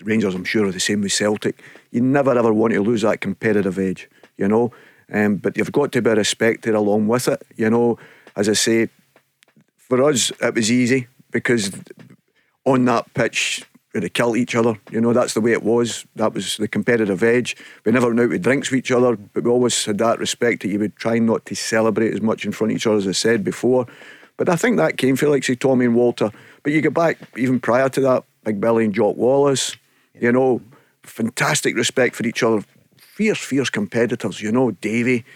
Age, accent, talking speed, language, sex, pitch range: 50-69, British, 220 wpm, English, male, 110-130 Hz